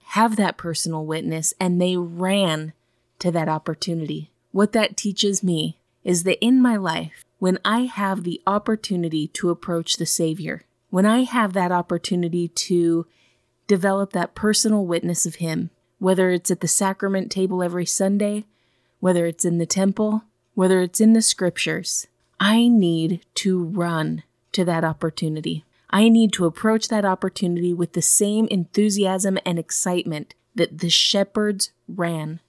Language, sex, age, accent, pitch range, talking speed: English, female, 20-39, American, 165-195 Hz, 150 wpm